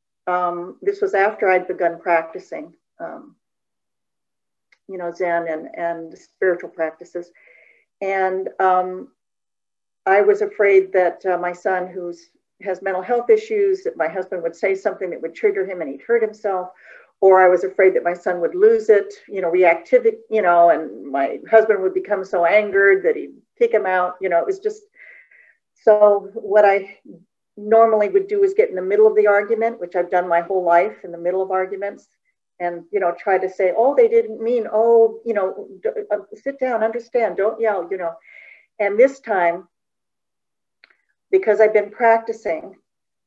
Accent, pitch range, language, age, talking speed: American, 180-230 Hz, English, 50-69, 180 wpm